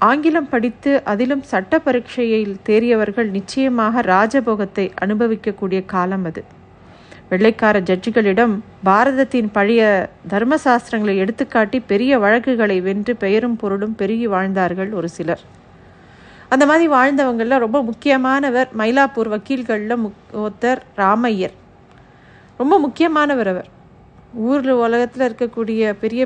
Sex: female